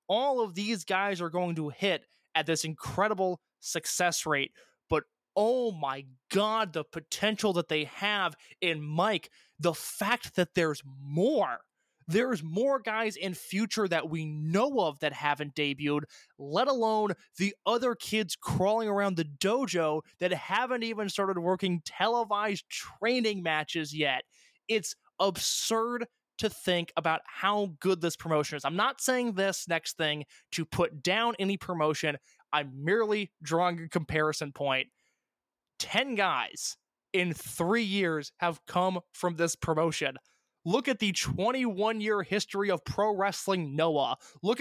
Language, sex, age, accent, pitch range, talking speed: English, male, 20-39, American, 160-210 Hz, 145 wpm